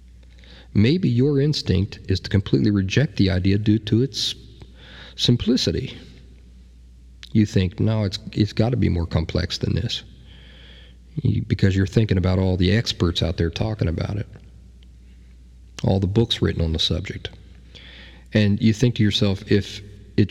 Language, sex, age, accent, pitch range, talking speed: English, male, 40-59, American, 85-110 Hz, 150 wpm